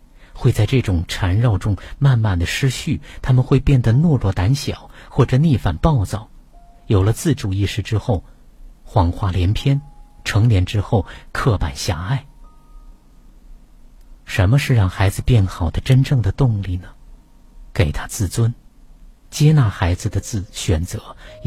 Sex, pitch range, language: male, 95-130 Hz, Chinese